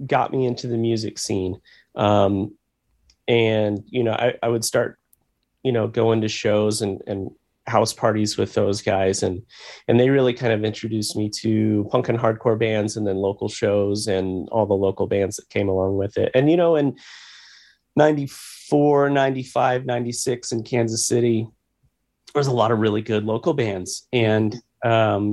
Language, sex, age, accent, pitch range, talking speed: English, male, 30-49, American, 100-115 Hz, 175 wpm